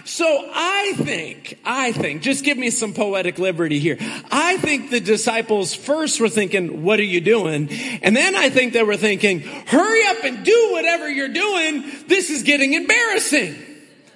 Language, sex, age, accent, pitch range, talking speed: English, male, 40-59, American, 195-290 Hz, 175 wpm